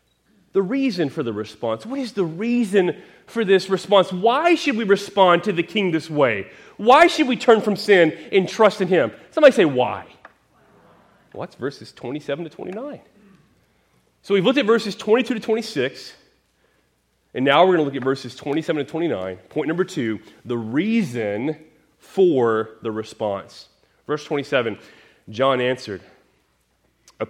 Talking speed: 155 wpm